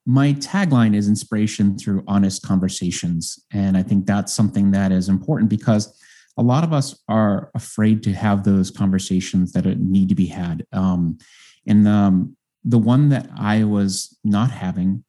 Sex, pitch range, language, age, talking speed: male, 95-115 Hz, English, 30-49, 165 wpm